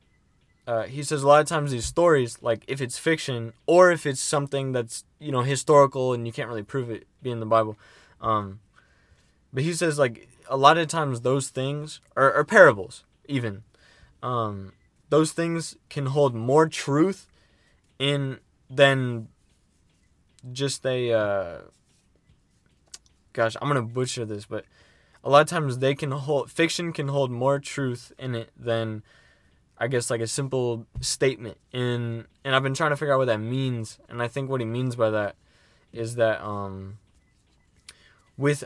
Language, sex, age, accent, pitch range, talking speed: English, male, 20-39, American, 115-140 Hz, 170 wpm